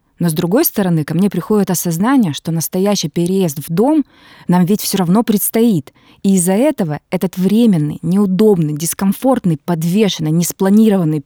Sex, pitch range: female, 170-215 Hz